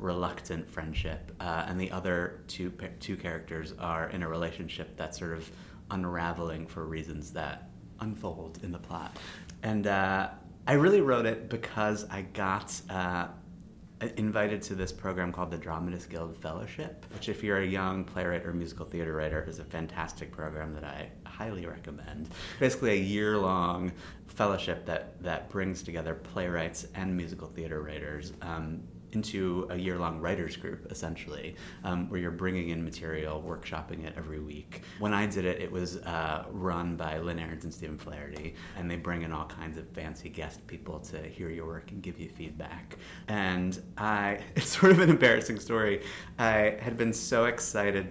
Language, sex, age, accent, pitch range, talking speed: English, male, 30-49, American, 80-95 Hz, 170 wpm